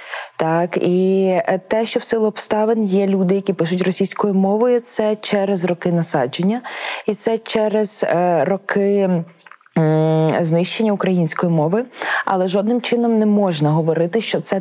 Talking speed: 130 wpm